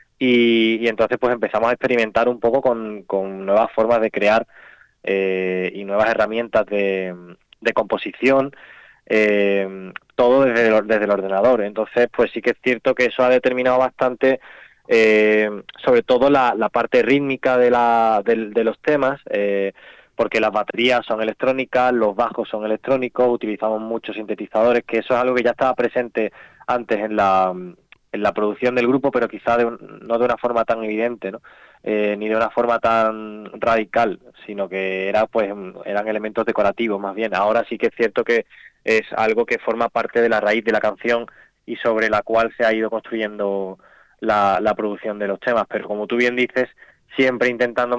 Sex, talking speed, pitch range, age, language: male, 175 wpm, 105-125 Hz, 20-39, Spanish